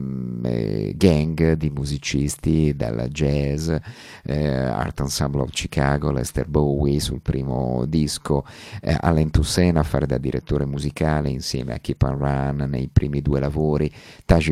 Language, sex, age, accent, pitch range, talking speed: Italian, male, 50-69, native, 65-80 Hz, 135 wpm